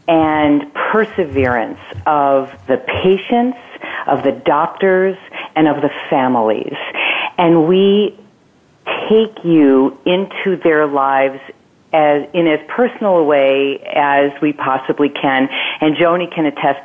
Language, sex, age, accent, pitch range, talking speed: English, female, 40-59, American, 140-180 Hz, 120 wpm